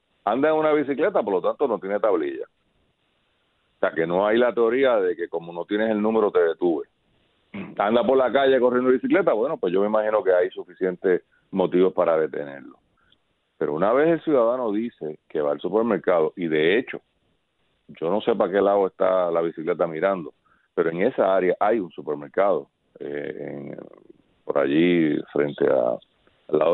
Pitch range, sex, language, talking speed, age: 90-135 Hz, male, Spanish, 175 wpm, 40-59